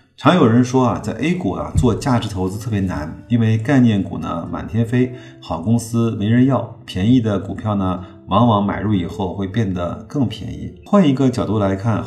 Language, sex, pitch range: Chinese, male, 95-115 Hz